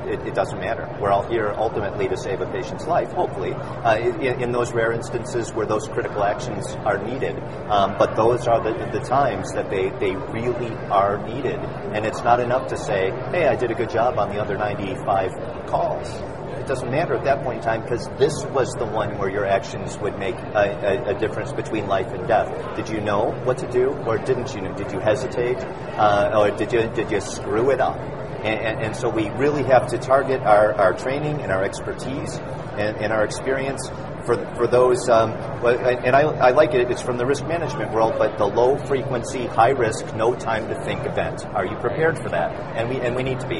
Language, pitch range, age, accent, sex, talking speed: English, 110-130 Hz, 40-59, American, male, 220 wpm